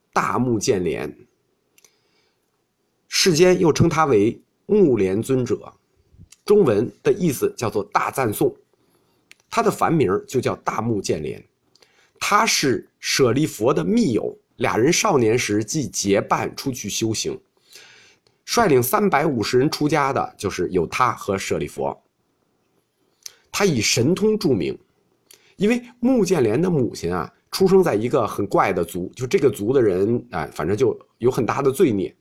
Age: 50-69